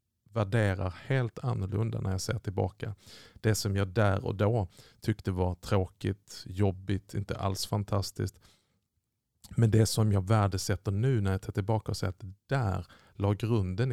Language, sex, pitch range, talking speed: Swedish, male, 100-115 Hz, 160 wpm